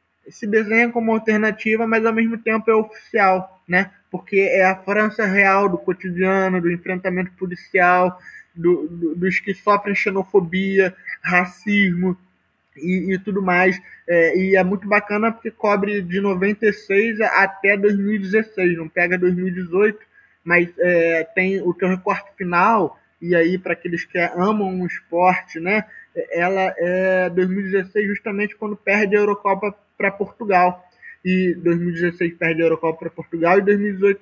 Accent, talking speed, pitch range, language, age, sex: Brazilian, 140 wpm, 180-210 Hz, Portuguese, 20-39, male